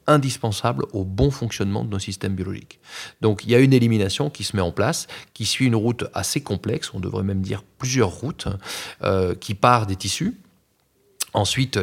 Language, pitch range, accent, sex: French, 100-130 Hz, French, male